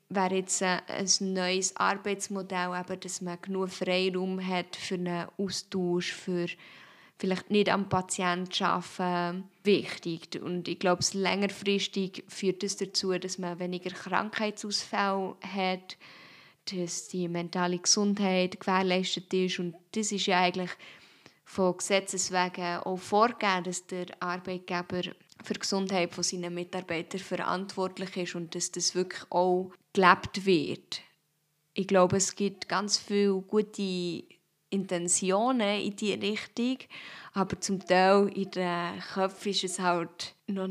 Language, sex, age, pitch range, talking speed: German, female, 20-39, 180-200 Hz, 130 wpm